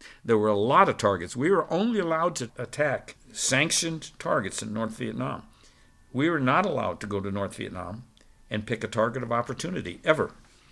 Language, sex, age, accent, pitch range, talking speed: English, male, 60-79, American, 110-130 Hz, 185 wpm